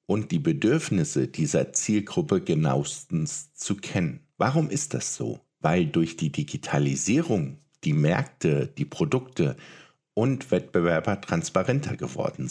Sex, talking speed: male, 115 wpm